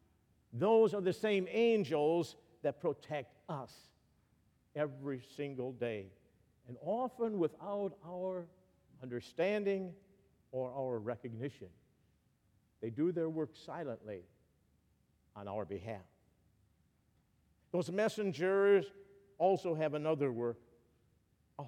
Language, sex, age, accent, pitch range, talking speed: English, male, 50-69, American, 120-180 Hz, 95 wpm